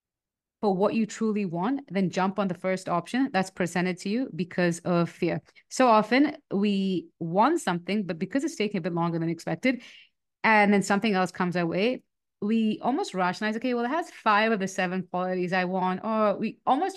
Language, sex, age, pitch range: English, female, 30-49, 185-235 Hz